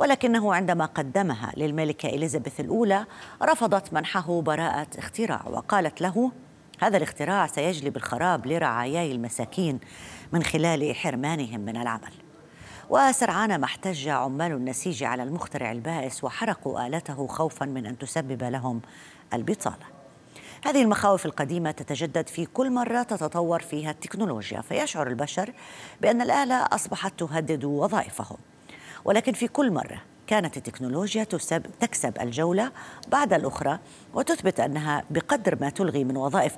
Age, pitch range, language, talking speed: 30-49, 145-200 Hz, Arabic, 120 wpm